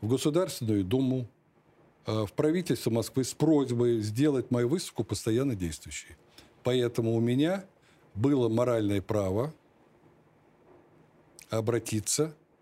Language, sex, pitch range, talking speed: Russian, male, 105-130 Hz, 95 wpm